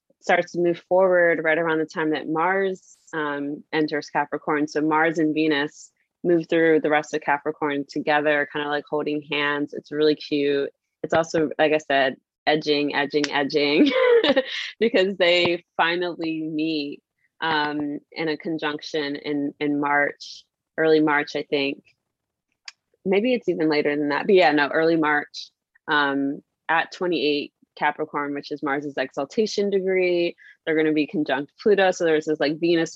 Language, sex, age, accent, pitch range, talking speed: English, female, 20-39, American, 145-170 Hz, 155 wpm